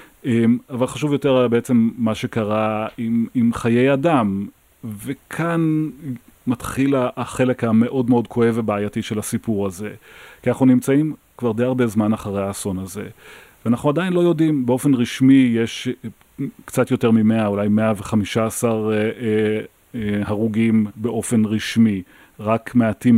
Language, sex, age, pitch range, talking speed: Hebrew, male, 30-49, 110-130 Hz, 120 wpm